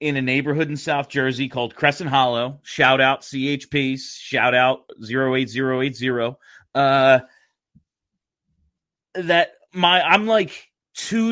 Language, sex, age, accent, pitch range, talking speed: English, male, 30-49, American, 130-170 Hz, 105 wpm